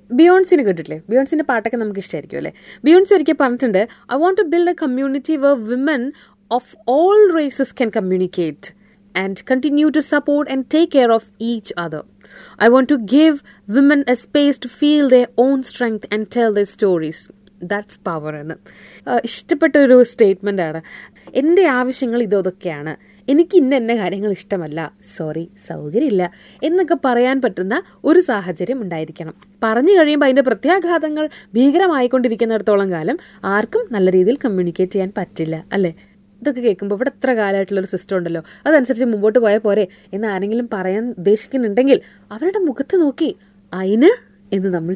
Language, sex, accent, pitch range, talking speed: Malayalam, female, native, 195-280 Hz, 135 wpm